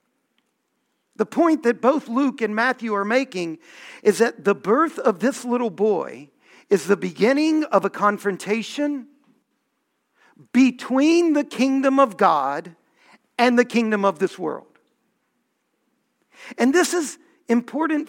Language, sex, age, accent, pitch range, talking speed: English, male, 50-69, American, 215-280 Hz, 125 wpm